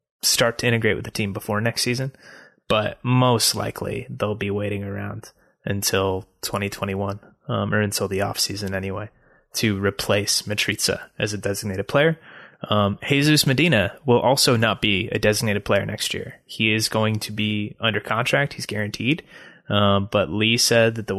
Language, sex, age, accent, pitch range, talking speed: English, male, 20-39, American, 105-120 Hz, 165 wpm